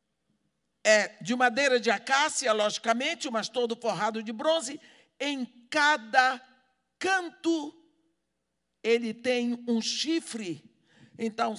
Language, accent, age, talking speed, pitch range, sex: Portuguese, Brazilian, 60-79, 100 wpm, 230-315 Hz, male